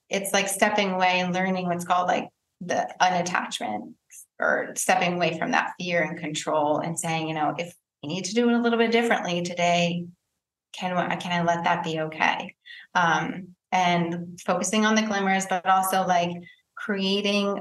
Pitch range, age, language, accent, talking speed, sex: 175-205 Hz, 20-39, English, American, 175 wpm, female